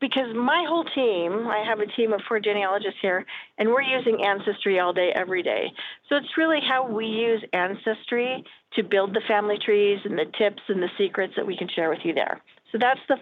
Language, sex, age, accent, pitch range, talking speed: English, female, 40-59, American, 185-235 Hz, 220 wpm